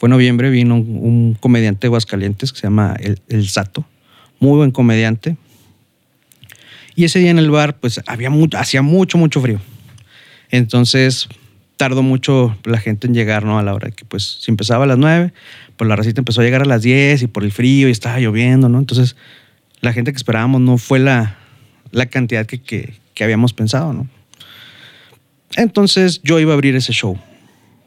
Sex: male